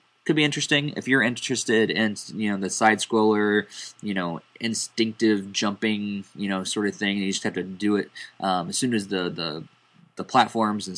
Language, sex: English, male